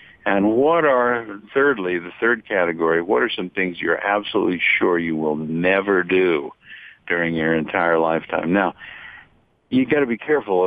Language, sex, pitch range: English, male, 85-110 Hz